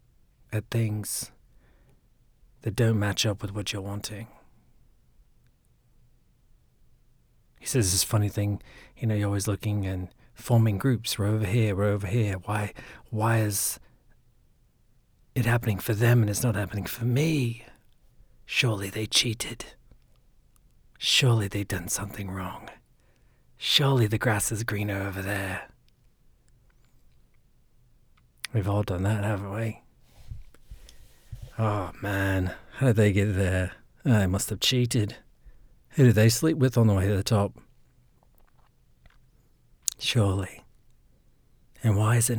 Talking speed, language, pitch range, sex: 125 wpm, English, 100-120 Hz, male